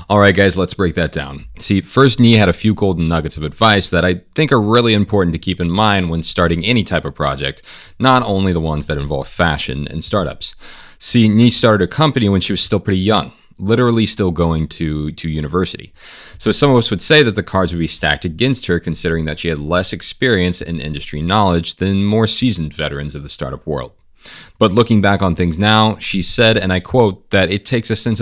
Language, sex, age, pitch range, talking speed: English, male, 30-49, 80-110 Hz, 225 wpm